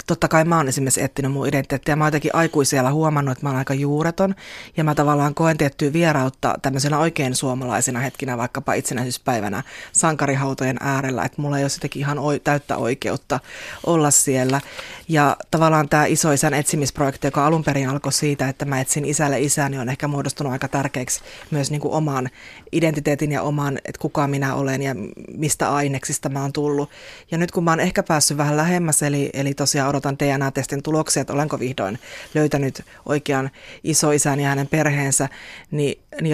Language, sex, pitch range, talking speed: Finnish, female, 140-160 Hz, 175 wpm